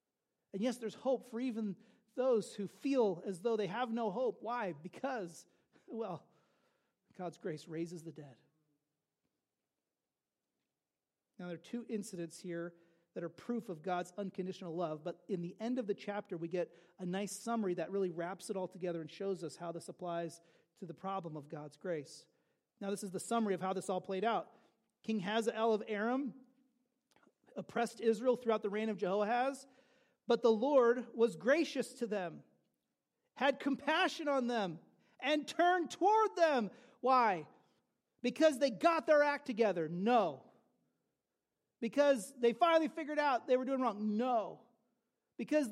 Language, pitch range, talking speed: English, 185-260 Hz, 160 wpm